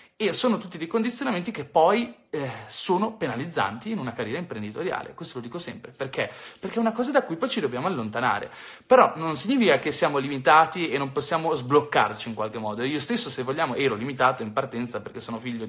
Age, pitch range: 30-49, 120-175 Hz